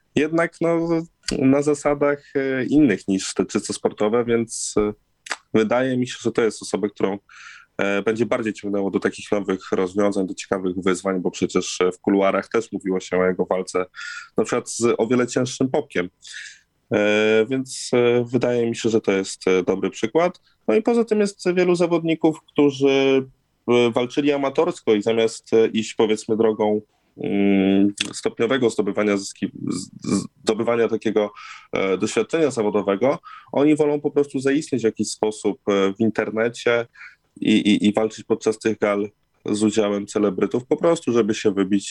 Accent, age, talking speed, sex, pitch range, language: native, 20-39, 145 wpm, male, 100-130 Hz, Polish